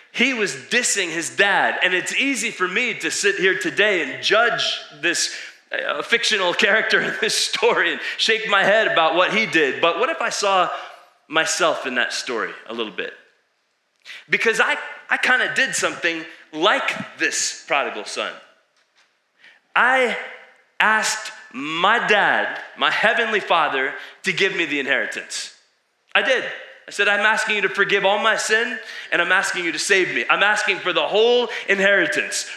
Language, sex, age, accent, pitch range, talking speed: English, male, 20-39, American, 185-220 Hz, 165 wpm